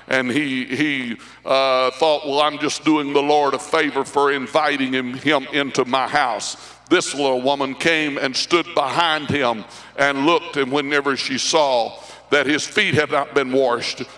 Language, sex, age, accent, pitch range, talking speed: English, male, 60-79, American, 145-210 Hz, 175 wpm